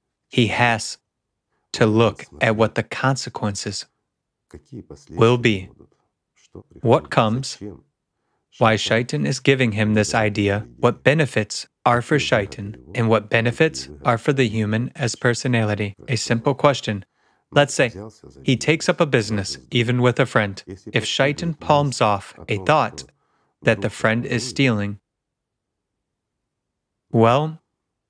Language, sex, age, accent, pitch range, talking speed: English, male, 30-49, American, 105-130 Hz, 125 wpm